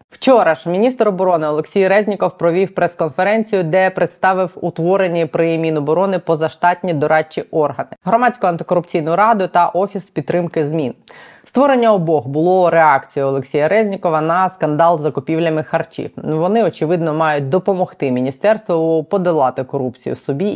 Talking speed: 125 wpm